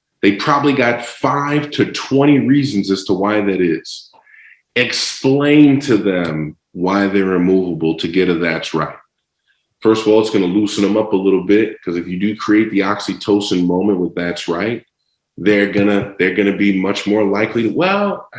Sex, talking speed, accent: male, 185 wpm, American